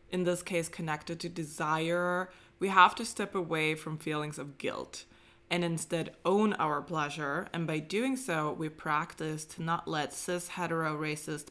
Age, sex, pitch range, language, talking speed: 20-39, female, 155-195 Hz, English, 155 wpm